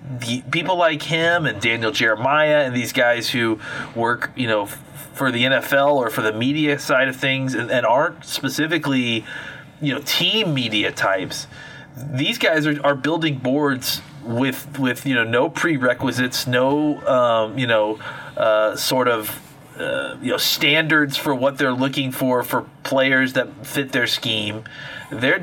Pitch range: 120-150 Hz